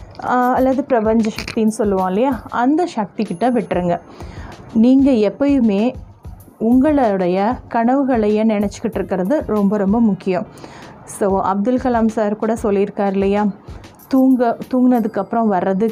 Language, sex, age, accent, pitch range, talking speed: Tamil, female, 30-49, native, 195-240 Hz, 100 wpm